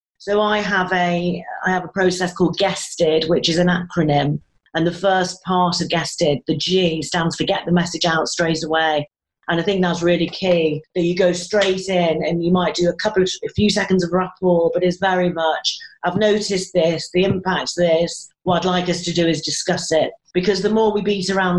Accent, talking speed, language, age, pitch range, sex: British, 215 wpm, English, 40-59, 170-190 Hz, female